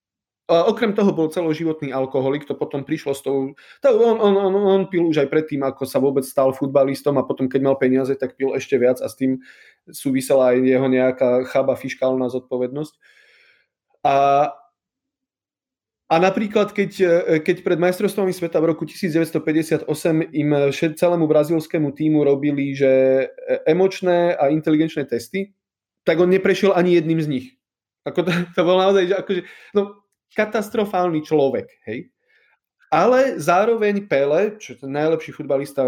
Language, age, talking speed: Slovak, 30-49, 150 wpm